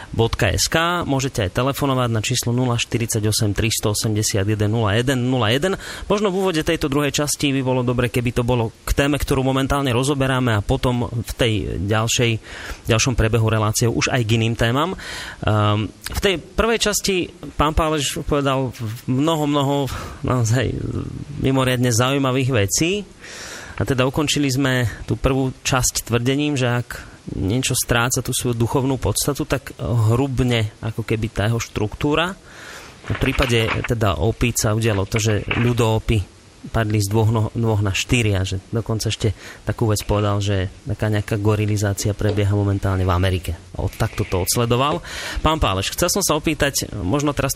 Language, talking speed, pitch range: Slovak, 150 wpm, 110-140 Hz